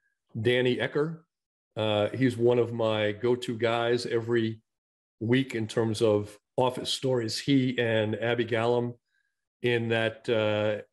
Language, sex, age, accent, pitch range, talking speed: English, male, 40-59, American, 110-125 Hz, 125 wpm